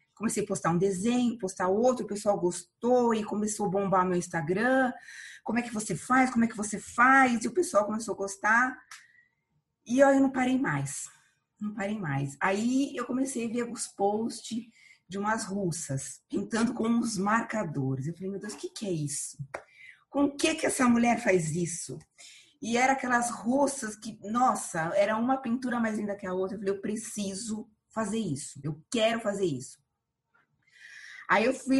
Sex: female